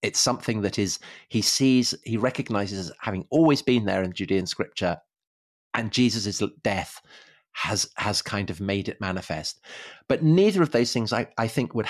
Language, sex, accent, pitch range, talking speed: English, male, British, 100-130 Hz, 170 wpm